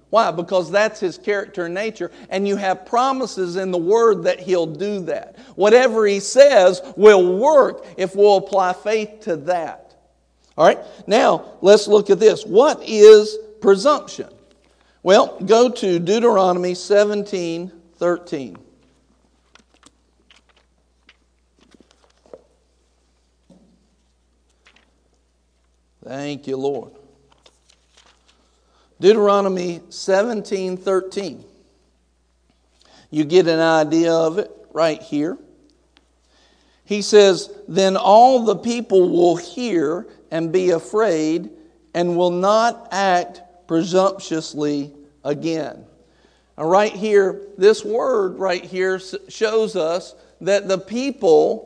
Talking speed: 100 wpm